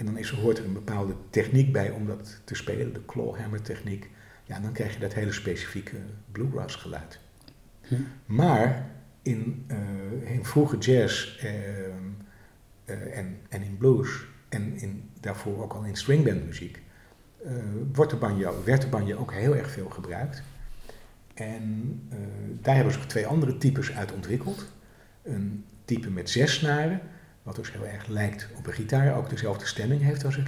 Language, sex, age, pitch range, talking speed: Dutch, male, 50-69, 105-130 Hz, 175 wpm